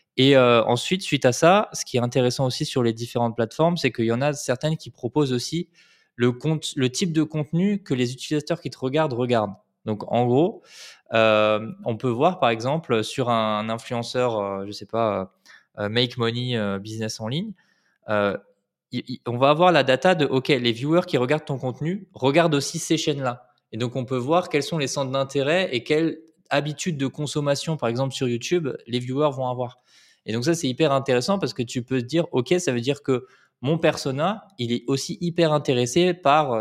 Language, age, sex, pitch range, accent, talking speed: French, 20-39, male, 120-155 Hz, French, 215 wpm